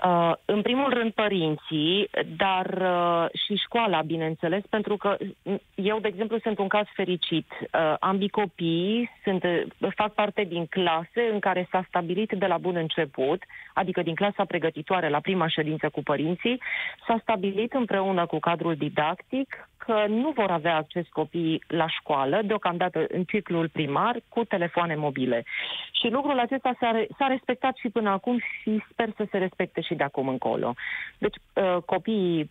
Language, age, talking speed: Romanian, 30-49, 155 wpm